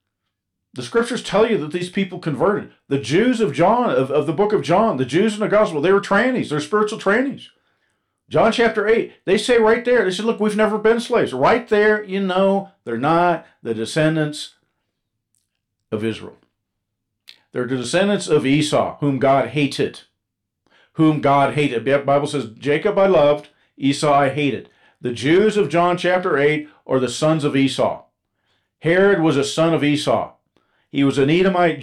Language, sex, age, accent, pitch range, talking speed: English, male, 50-69, American, 135-185 Hz, 180 wpm